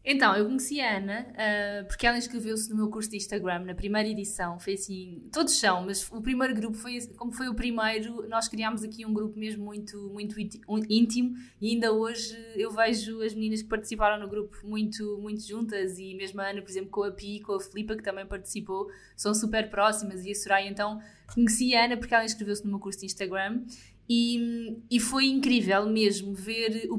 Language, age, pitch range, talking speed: Portuguese, 20-39, 200-225 Hz, 205 wpm